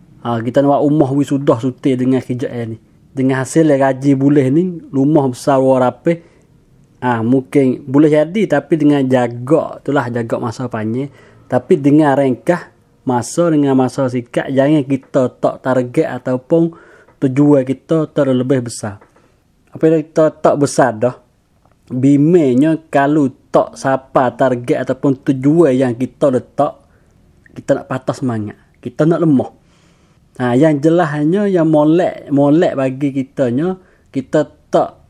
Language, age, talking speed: Malay, 20-39, 135 wpm